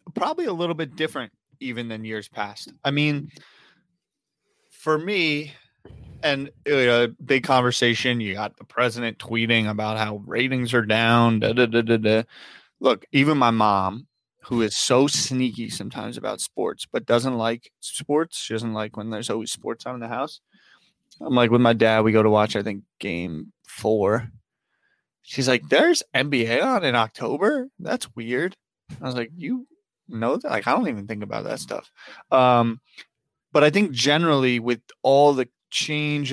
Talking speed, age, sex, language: 160 wpm, 20-39, male, English